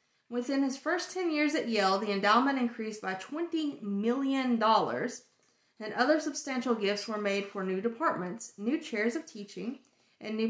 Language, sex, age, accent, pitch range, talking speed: English, female, 30-49, American, 205-265 Hz, 160 wpm